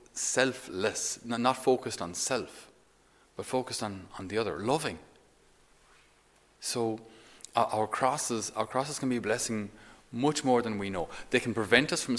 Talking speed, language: 160 wpm, English